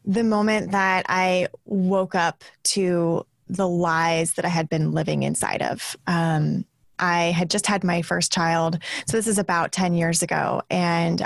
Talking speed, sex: 170 wpm, female